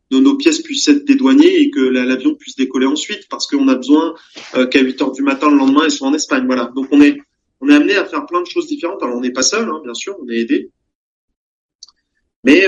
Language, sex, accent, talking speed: French, male, French, 240 wpm